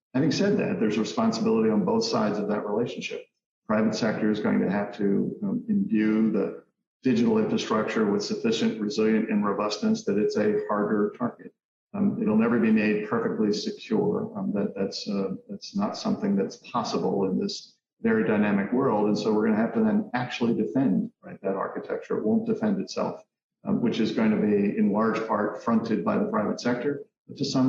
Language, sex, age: English, male, 50-69